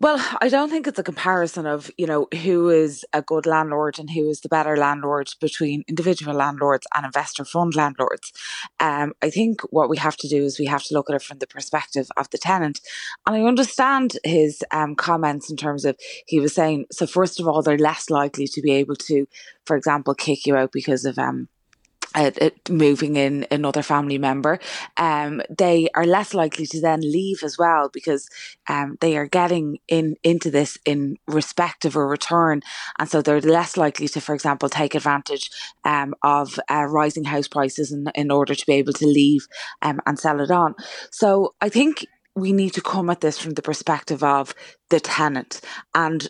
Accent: Irish